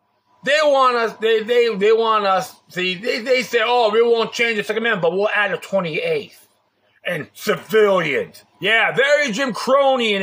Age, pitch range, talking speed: 30-49, 195-245 Hz, 180 wpm